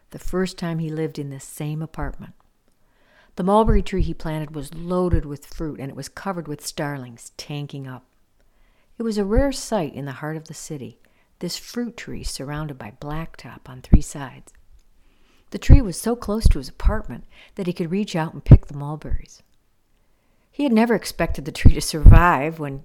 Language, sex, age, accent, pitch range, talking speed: English, female, 60-79, American, 140-175 Hz, 190 wpm